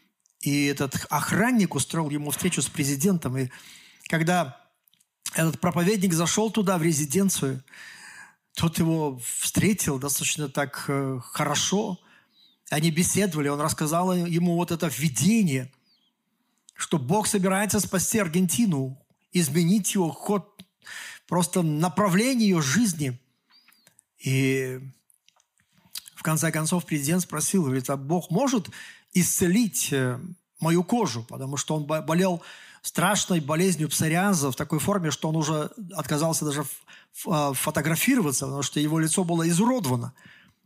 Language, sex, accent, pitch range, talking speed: Russian, male, native, 150-195 Hz, 115 wpm